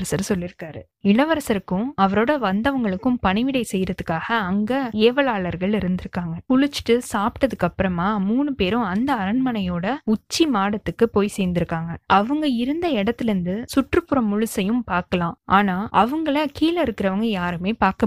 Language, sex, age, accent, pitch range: Tamil, female, 20-39, native, 190-250 Hz